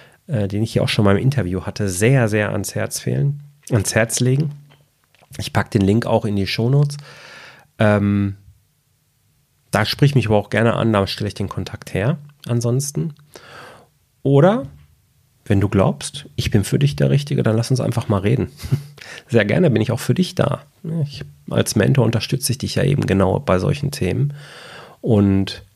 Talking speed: 185 wpm